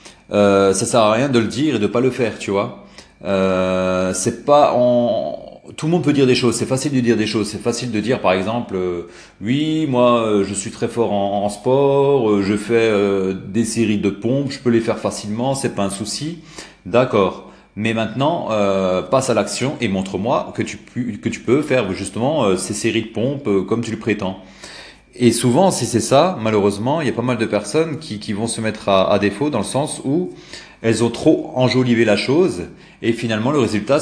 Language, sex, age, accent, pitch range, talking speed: French, male, 30-49, French, 100-130 Hz, 230 wpm